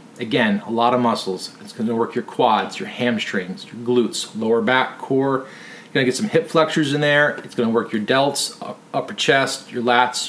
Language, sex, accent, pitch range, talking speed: English, male, American, 120-165 Hz, 215 wpm